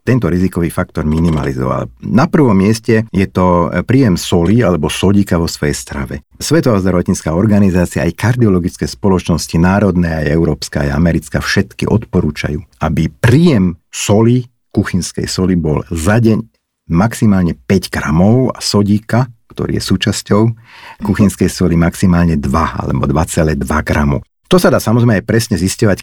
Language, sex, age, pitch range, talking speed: Slovak, male, 50-69, 85-105 Hz, 135 wpm